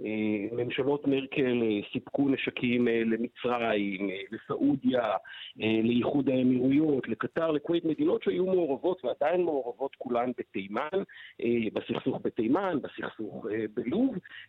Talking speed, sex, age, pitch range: 85 wpm, male, 50-69, 120-175 Hz